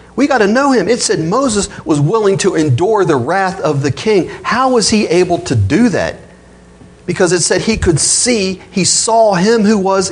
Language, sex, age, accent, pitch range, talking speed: English, male, 40-59, American, 105-170 Hz, 210 wpm